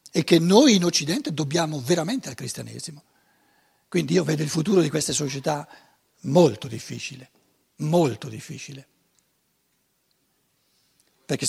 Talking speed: 115 wpm